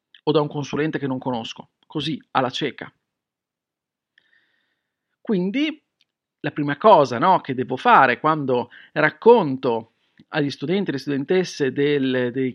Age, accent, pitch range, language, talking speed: 40-59, native, 135-195 Hz, Italian, 130 wpm